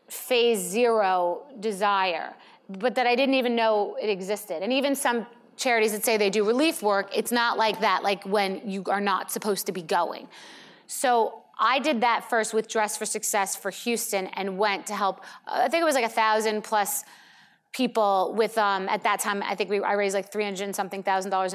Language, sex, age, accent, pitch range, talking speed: English, female, 30-49, American, 195-220 Hz, 205 wpm